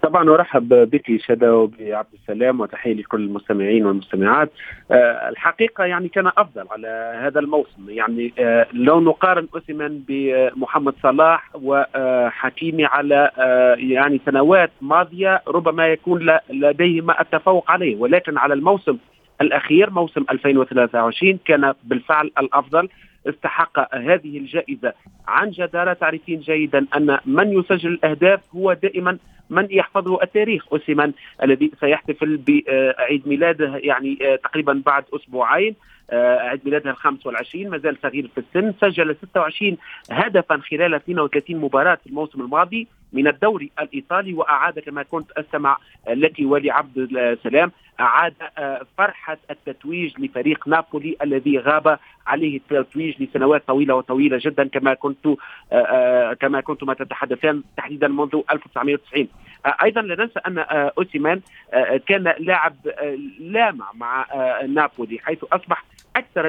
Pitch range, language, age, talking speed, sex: 140-180 Hz, Arabic, 40-59, 120 wpm, male